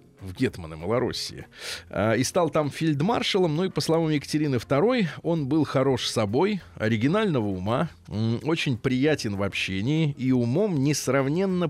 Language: Russian